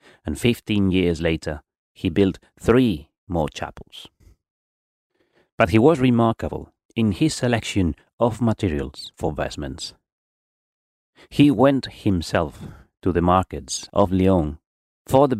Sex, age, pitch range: male, 30-49, 80-120 Hz